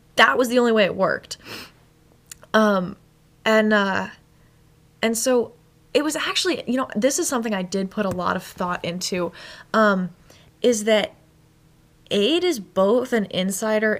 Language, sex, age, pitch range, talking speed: English, female, 10-29, 180-230 Hz, 155 wpm